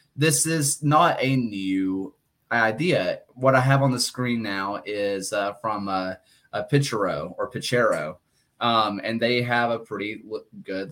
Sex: male